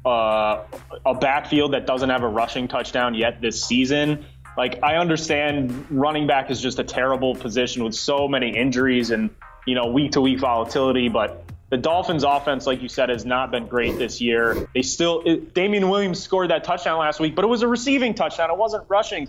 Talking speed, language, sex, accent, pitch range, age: 195 wpm, English, male, American, 125-165 Hz, 20-39